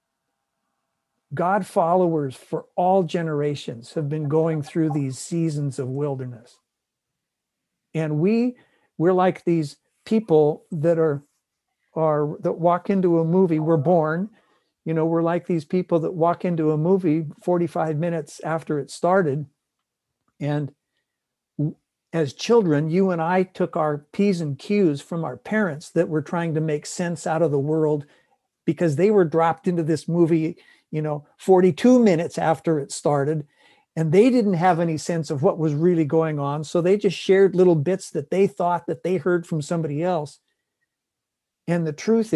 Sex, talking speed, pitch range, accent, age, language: male, 160 wpm, 155-180 Hz, American, 60-79, English